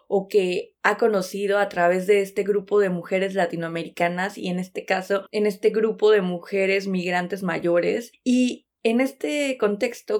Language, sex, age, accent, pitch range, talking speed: Spanish, female, 20-39, Mexican, 185-230 Hz, 160 wpm